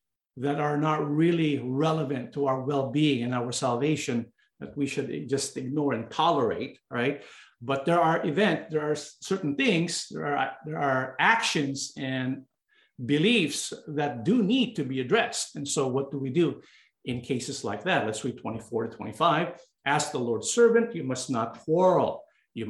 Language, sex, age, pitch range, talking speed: English, male, 50-69, 130-165 Hz, 165 wpm